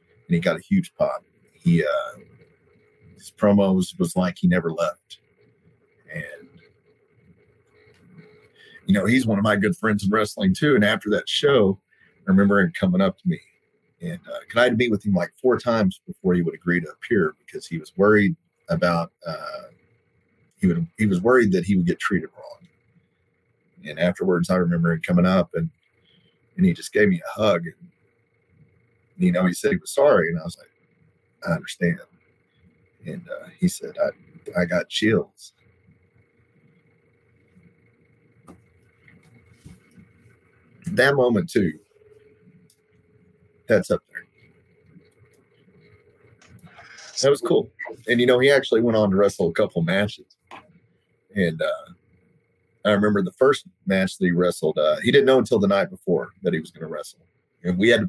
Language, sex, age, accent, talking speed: English, male, 40-59, American, 160 wpm